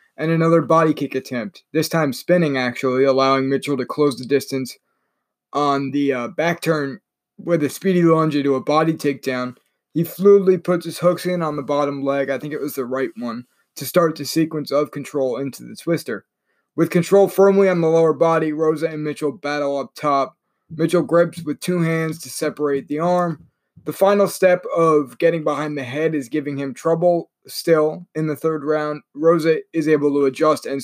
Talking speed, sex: 195 wpm, male